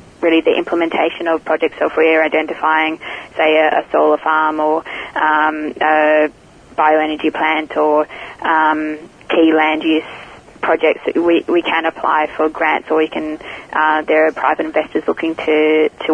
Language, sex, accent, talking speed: English, female, Australian, 150 wpm